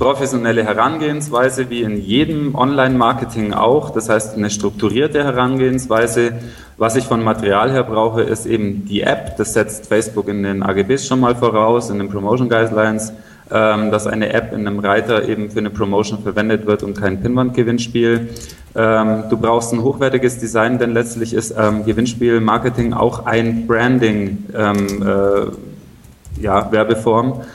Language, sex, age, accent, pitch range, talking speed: German, male, 20-39, German, 105-120 Hz, 135 wpm